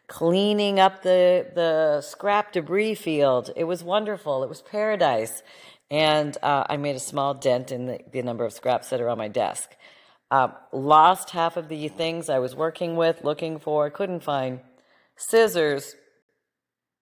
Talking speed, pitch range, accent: 160 wpm, 140-190 Hz, American